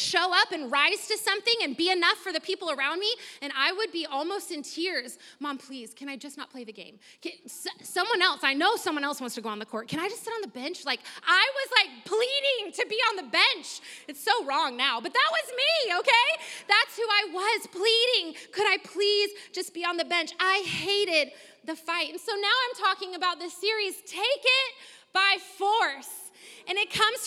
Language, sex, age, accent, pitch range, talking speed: English, female, 20-39, American, 295-400 Hz, 220 wpm